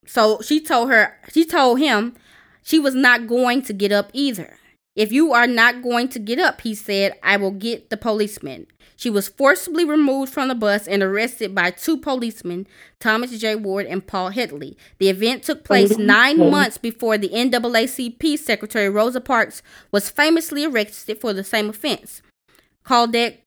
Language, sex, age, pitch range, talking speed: English, female, 20-39, 195-250 Hz, 175 wpm